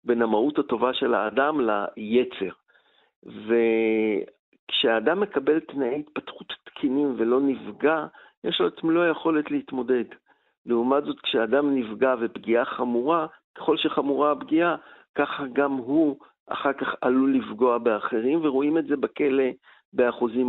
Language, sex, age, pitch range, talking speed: Hebrew, male, 50-69, 120-150 Hz, 120 wpm